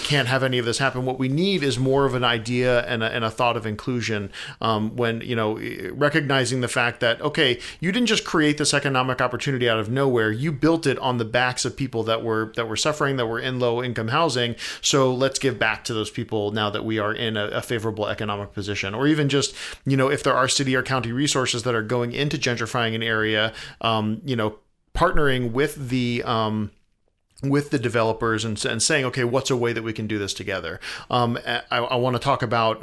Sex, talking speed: male, 225 wpm